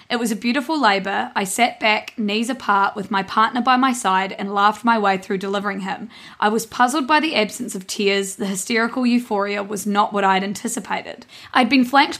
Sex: female